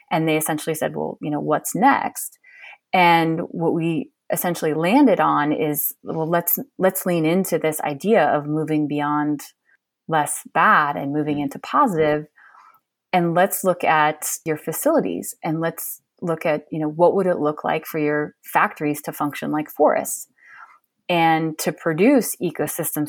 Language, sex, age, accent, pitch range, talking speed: English, female, 30-49, American, 155-185 Hz, 155 wpm